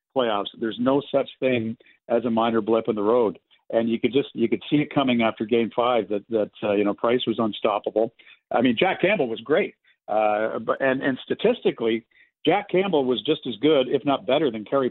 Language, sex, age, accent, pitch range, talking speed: English, male, 50-69, American, 115-150 Hz, 215 wpm